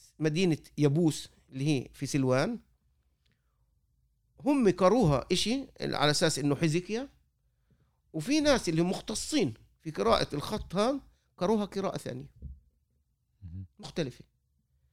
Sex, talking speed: male, 105 wpm